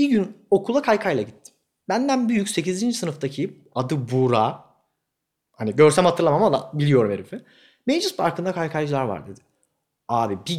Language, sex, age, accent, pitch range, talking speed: Turkish, male, 30-49, native, 115-175 Hz, 135 wpm